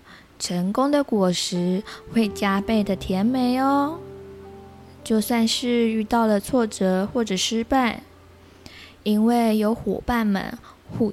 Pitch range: 185-245 Hz